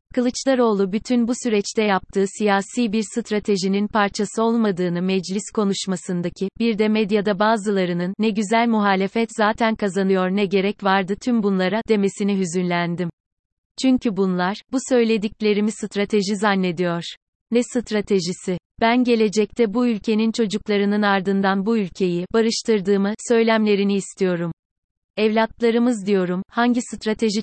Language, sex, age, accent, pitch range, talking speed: Turkish, female, 30-49, native, 190-225 Hz, 110 wpm